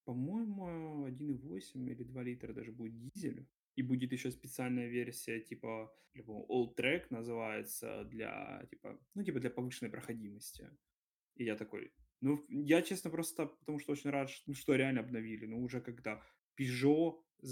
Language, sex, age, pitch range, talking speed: Ukrainian, male, 20-39, 115-145 Hz, 160 wpm